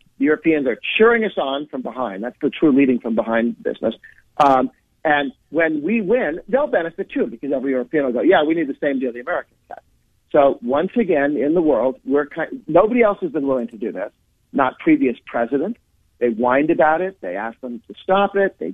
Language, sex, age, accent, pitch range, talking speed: English, male, 50-69, American, 120-170 Hz, 215 wpm